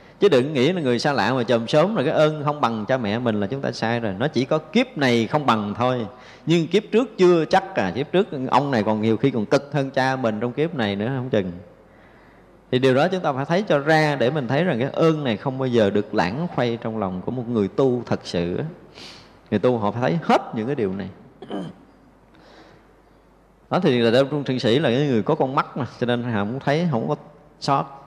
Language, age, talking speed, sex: Vietnamese, 20-39, 250 wpm, male